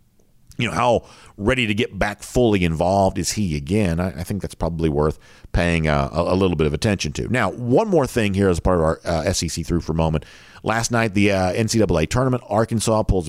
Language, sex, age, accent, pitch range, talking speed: English, male, 50-69, American, 85-110 Hz, 215 wpm